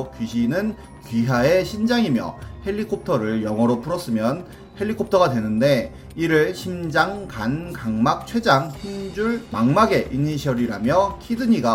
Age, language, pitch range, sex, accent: 30-49, Korean, 120-185 Hz, male, native